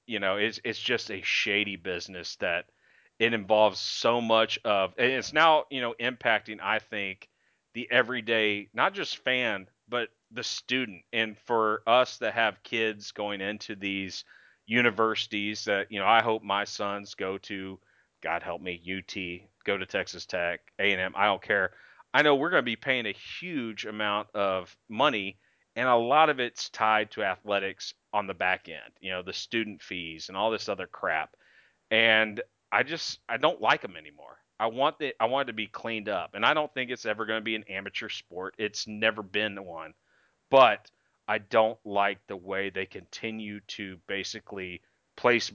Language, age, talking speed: English, 30-49, 185 wpm